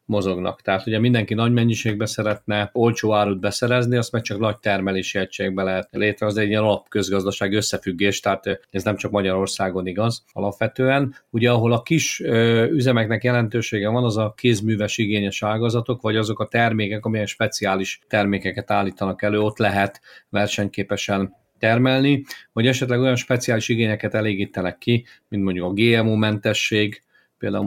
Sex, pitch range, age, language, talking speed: male, 100-115 Hz, 40-59, Hungarian, 145 wpm